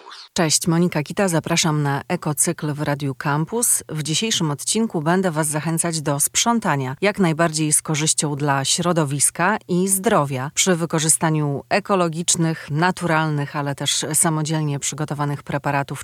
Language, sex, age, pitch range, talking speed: Polish, female, 30-49, 150-180 Hz, 125 wpm